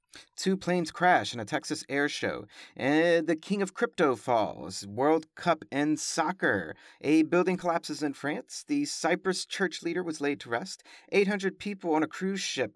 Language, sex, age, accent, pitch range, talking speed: English, male, 30-49, American, 145-185 Hz, 175 wpm